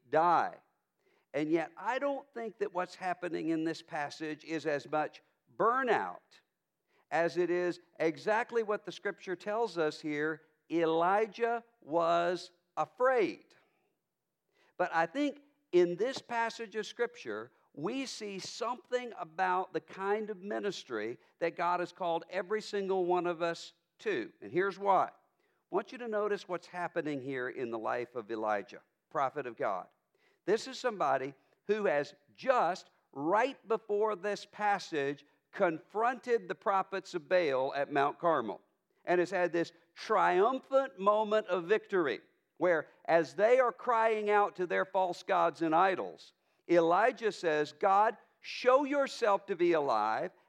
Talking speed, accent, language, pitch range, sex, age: 145 wpm, American, English, 165-220 Hz, male, 50-69